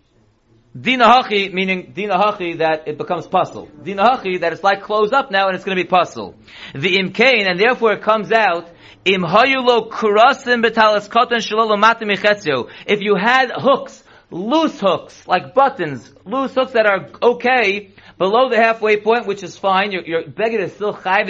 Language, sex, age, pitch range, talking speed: English, male, 30-49, 195-245 Hz, 155 wpm